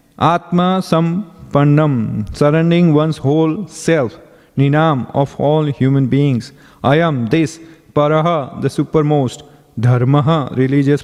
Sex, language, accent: male, English, Indian